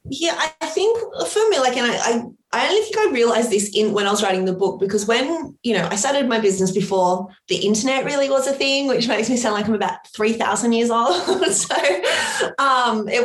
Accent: Australian